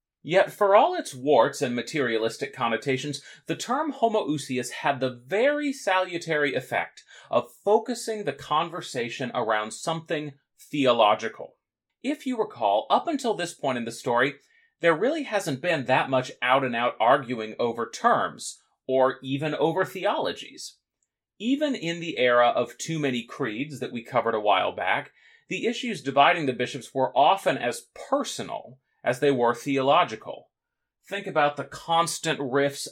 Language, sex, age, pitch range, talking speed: English, male, 30-49, 125-170 Hz, 145 wpm